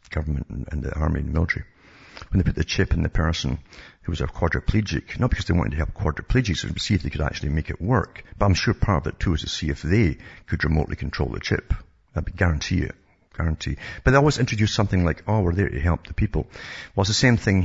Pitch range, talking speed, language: 75-95 Hz, 250 wpm, English